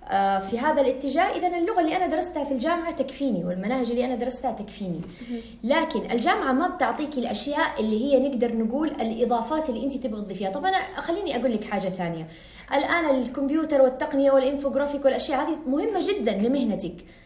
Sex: female